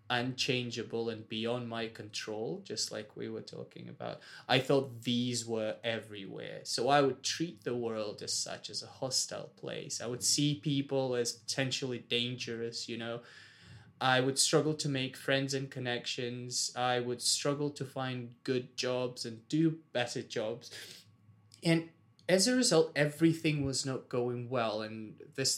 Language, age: English, 20-39